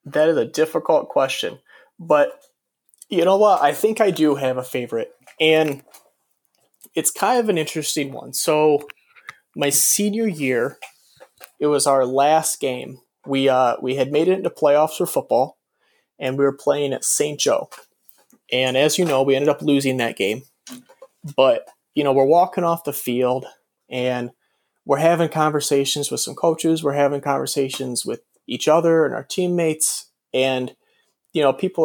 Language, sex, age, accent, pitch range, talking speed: English, male, 30-49, American, 130-160 Hz, 165 wpm